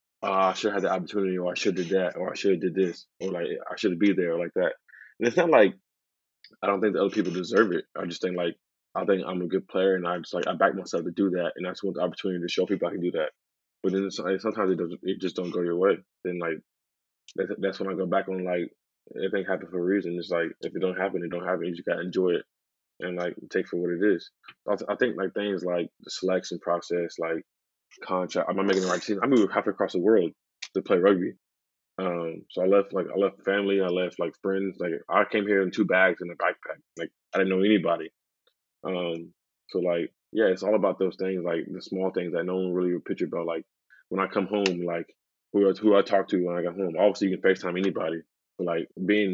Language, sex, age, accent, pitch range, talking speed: English, male, 20-39, American, 85-95 Hz, 265 wpm